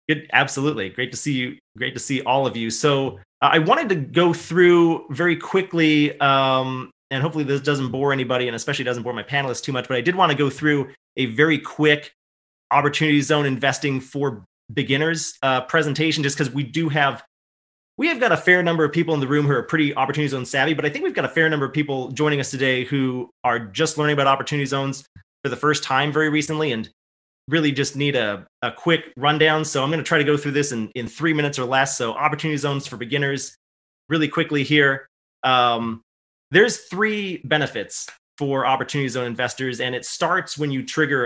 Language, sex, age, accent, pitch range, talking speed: English, male, 30-49, American, 130-155 Hz, 210 wpm